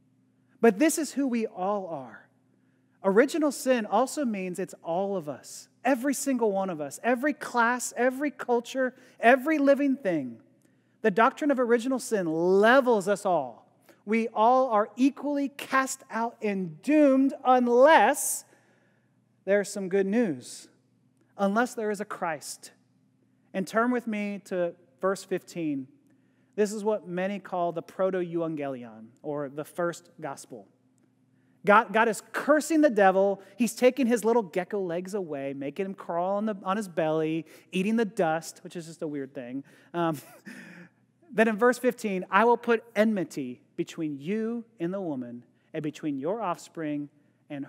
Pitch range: 160-240 Hz